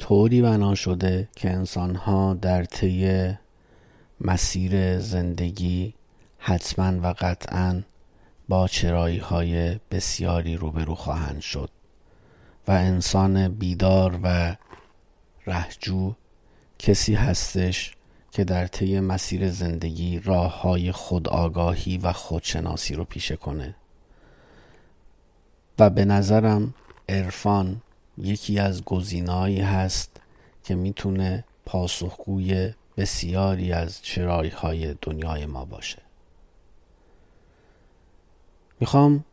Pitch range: 85-100 Hz